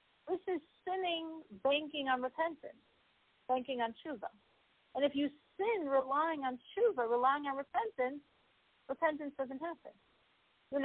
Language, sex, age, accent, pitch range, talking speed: English, female, 50-69, American, 230-310 Hz, 125 wpm